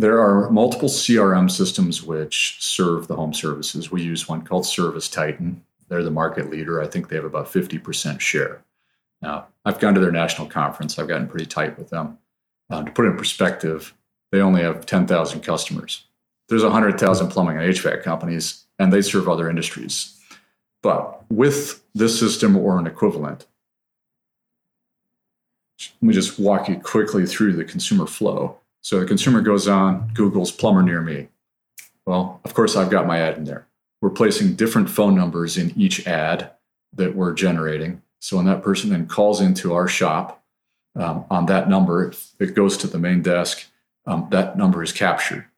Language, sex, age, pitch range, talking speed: English, male, 40-59, 85-115 Hz, 175 wpm